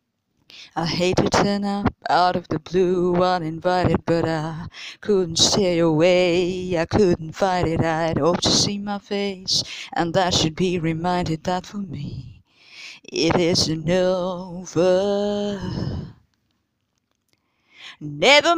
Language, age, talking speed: English, 30-49, 120 wpm